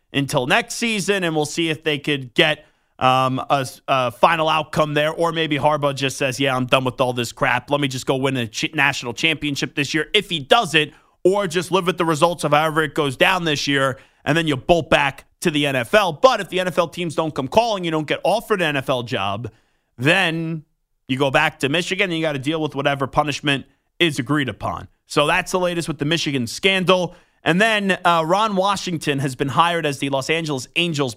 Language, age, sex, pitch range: English, 30-49, male, 140-170 Hz